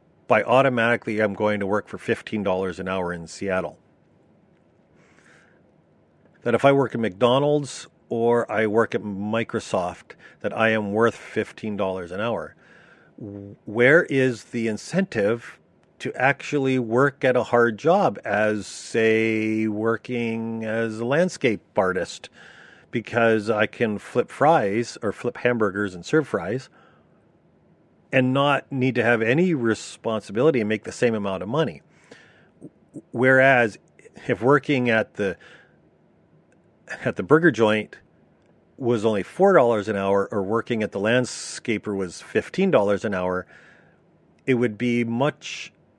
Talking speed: 130 wpm